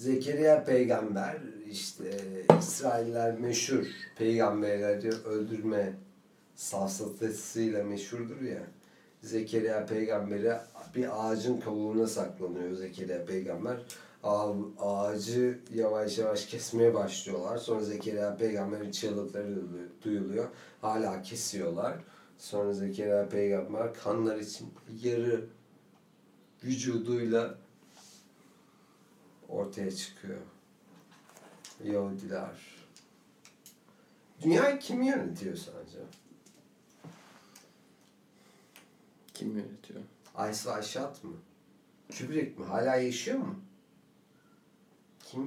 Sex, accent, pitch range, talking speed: male, native, 100-120 Hz, 75 wpm